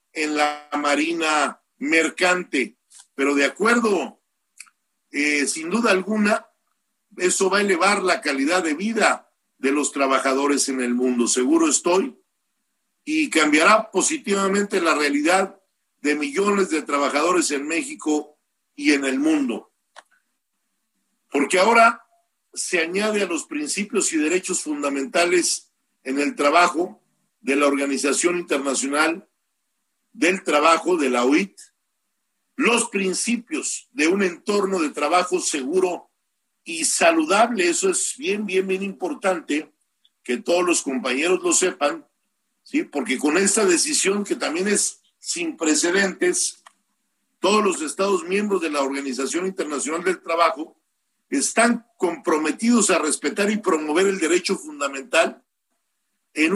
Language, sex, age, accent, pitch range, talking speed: Spanish, male, 50-69, Mexican, 150-240 Hz, 120 wpm